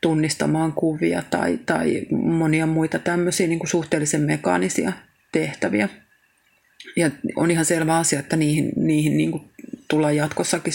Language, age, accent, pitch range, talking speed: Finnish, 30-49, native, 155-185 Hz, 130 wpm